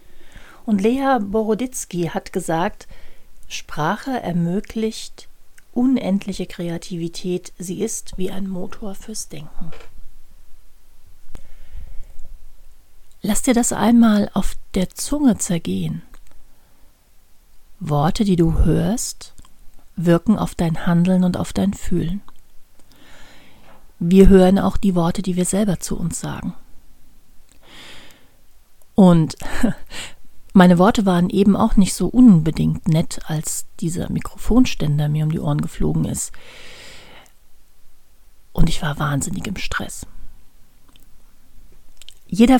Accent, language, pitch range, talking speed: German, German, 165-215 Hz, 105 wpm